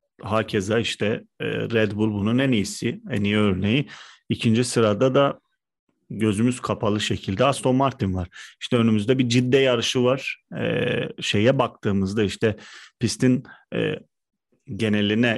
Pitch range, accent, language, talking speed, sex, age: 105-130 Hz, native, Turkish, 130 wpm, male, 40-59